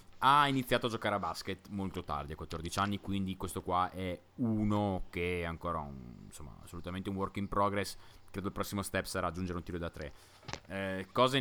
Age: 20-39